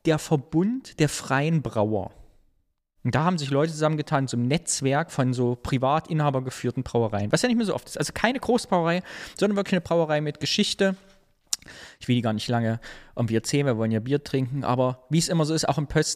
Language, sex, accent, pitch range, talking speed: German, male, German, 125-160 Hz, 210 wpm